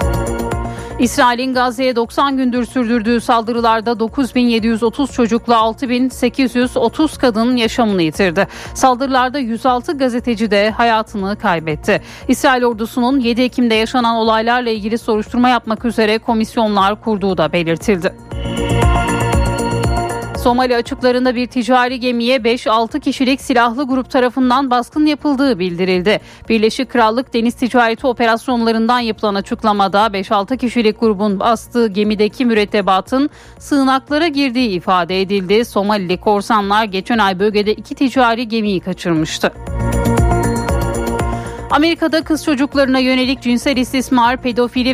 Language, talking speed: Turkish, 105 wpm